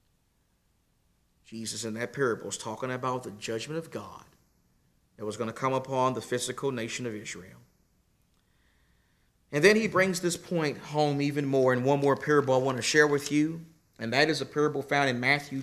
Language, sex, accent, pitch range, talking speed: English, male, American, 125-160 Hz, 190 wpm